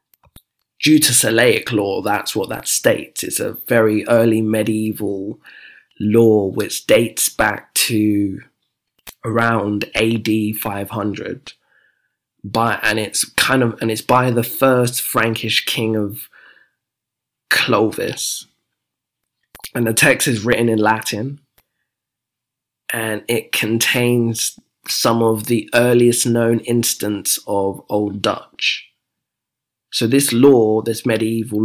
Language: English